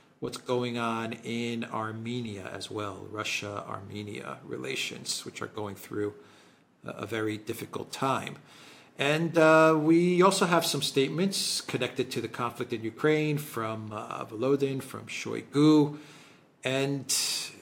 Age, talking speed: 50-69, 125 wpm